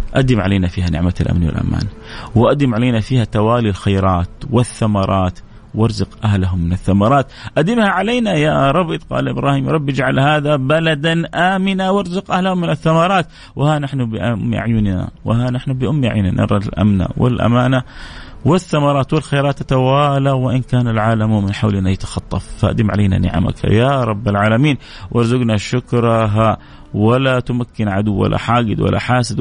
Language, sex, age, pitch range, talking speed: English, male, 30-49, 95-130 Hz, 135 wpm